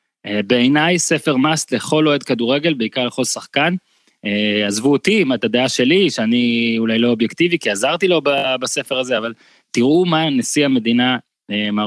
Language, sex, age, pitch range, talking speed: Hebrew, male, 20-39, 115-150 Hz, 140 wpm